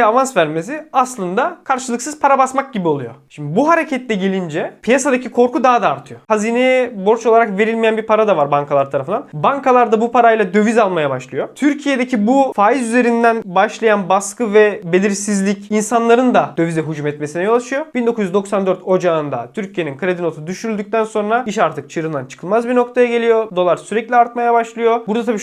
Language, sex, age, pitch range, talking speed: Turkish, male, 30-49, 160-225 Hz, 165 wpm